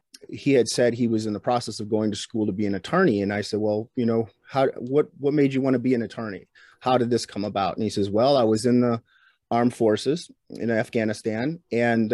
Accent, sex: American, male